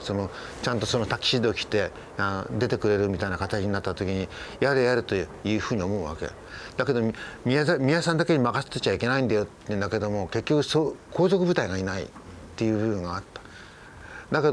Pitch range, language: 100-135 Hz, Japanese